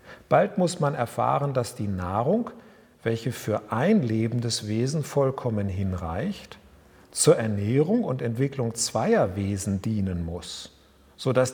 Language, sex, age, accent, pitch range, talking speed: German, male, 50-69, German, 115-155 Hz, 120 wpm